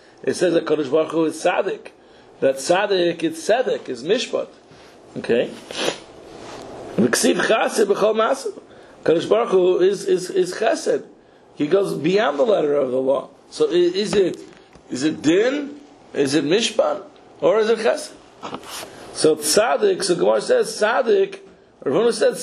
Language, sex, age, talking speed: English, male, 60-79, 135 wpm